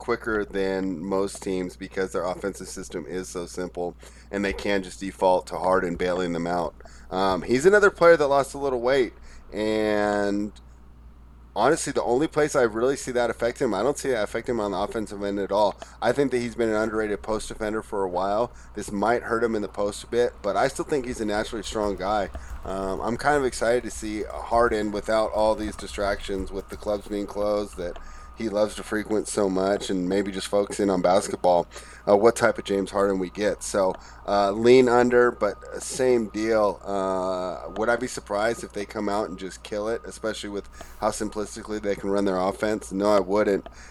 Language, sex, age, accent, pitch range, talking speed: English, male, 30-49, American, 95-110 Hz, 210 wpm